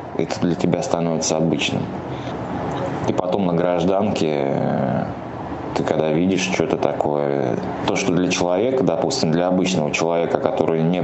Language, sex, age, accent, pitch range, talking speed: Russian, male, 20-39, native, 75-90 Hz, 130 wpm